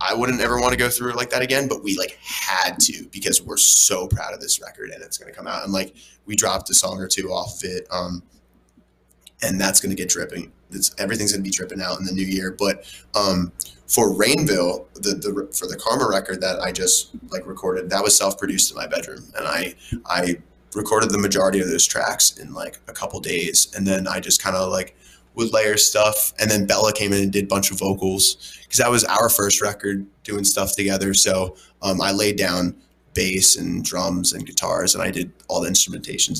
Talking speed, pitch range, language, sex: 230 wpm, 90-100 Hz, English, male